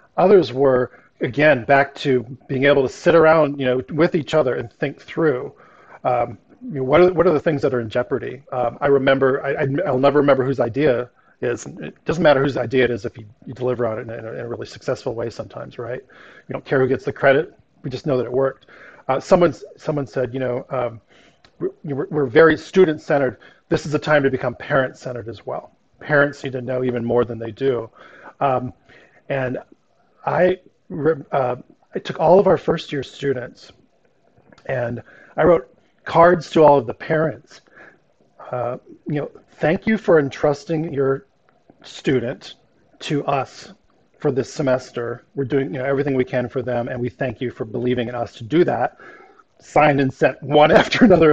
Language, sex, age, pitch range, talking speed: English, male, 40-59, 125-145 Hz, 195 wpm